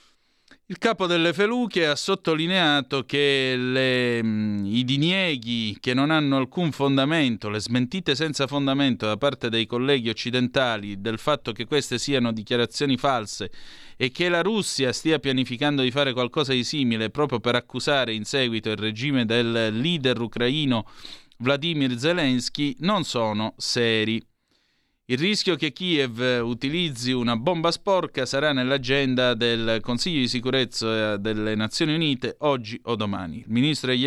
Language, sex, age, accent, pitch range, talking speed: Italian, male, 30-49, native, 115-145 Hz, 140 wpm